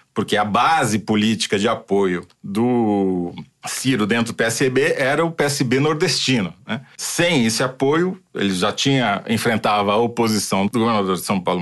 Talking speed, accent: 155 wpm, Brazilian